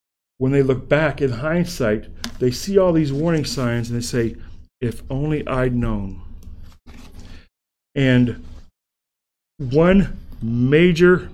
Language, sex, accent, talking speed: English, male, American, 115 wpm